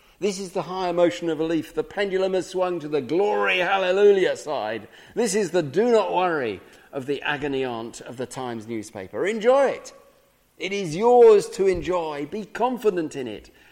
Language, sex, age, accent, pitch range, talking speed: English, male, 50-69, British, 135-190 Hz, 185 wpm